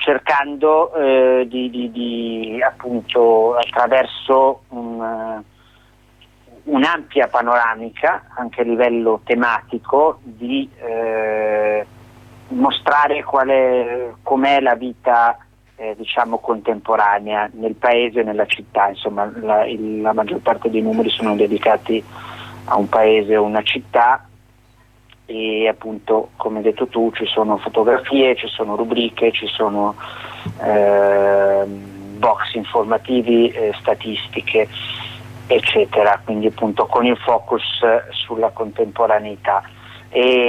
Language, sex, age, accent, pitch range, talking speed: Italian, male, 30-49, native, 110-125 Hz, 110 wpm